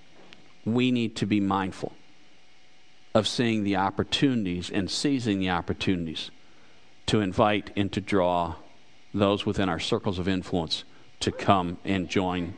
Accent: American